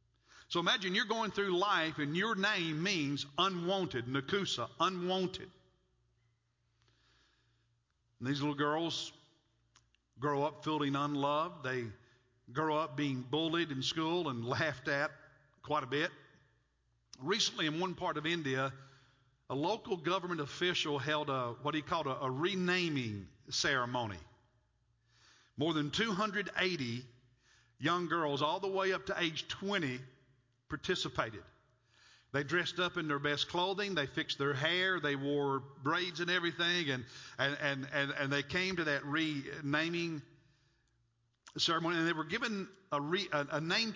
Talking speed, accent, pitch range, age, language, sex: 140 wpm, American, 130-175 Hz, 50-69, English, male